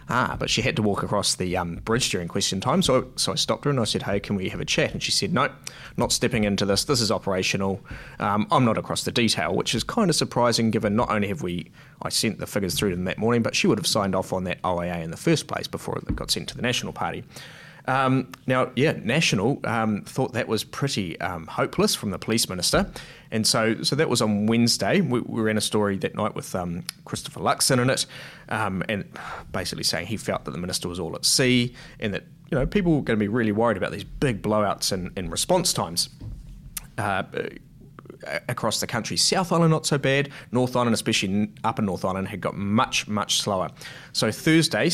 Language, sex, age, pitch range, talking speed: English, male, 20-39, 95-125 Hz, 230 wpm